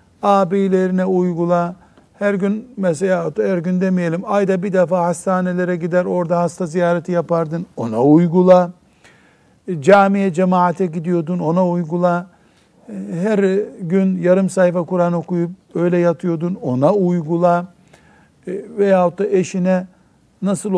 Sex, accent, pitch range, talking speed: male, native, 160-195 Hz, 110 wpm